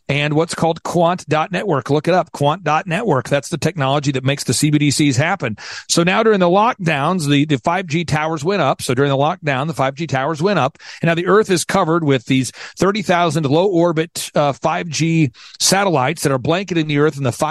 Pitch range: 145-180 Hz